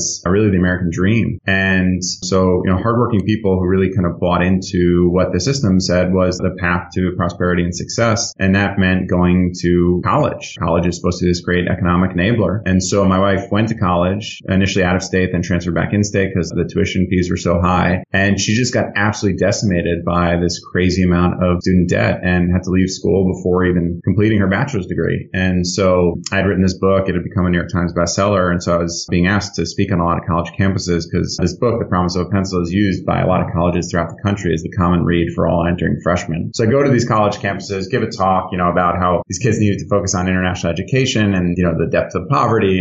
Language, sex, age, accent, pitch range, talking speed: English, male, 30-49, American, 90-100 Hz, 240 wpm